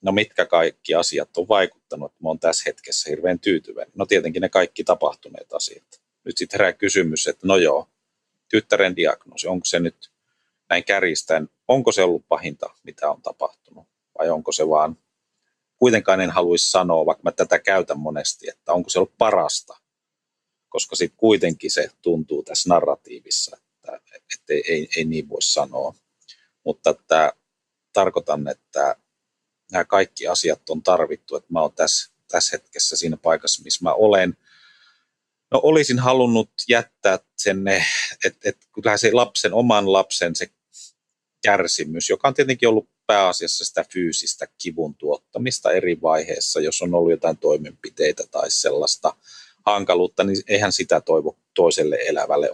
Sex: male